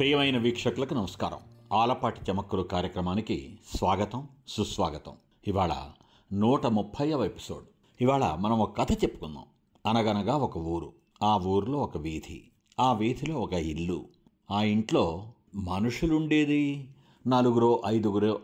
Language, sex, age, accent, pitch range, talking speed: Telugu, male, 60-79, native, 90-120 Hz, 115 wpm